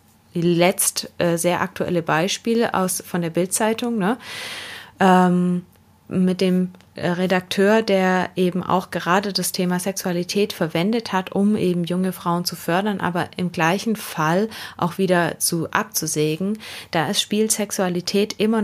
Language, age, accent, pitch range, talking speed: German, 20-39, German, 170-200 Hz, 130 wpm